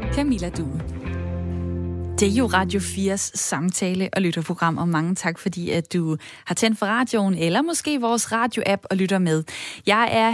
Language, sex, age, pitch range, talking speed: Danish, female, 20-39, 190-235 Hz, 170 wpm